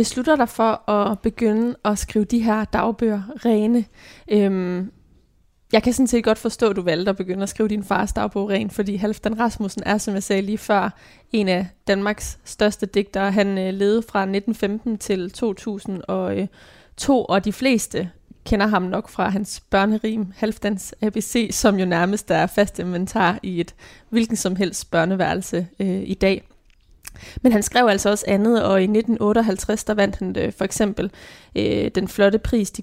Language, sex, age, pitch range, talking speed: Danish, female, 20-39, 195-225 Hz, 180 wpm